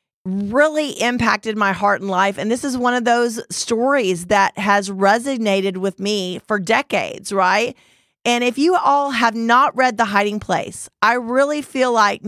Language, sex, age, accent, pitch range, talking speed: English, female, 40-59, American, 200-245 Hz, 170 wpm